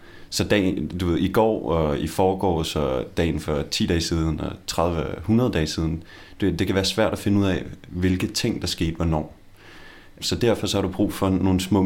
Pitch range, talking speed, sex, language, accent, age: 85-105 Hz, 210 wpm, male, Danish, native, 30-49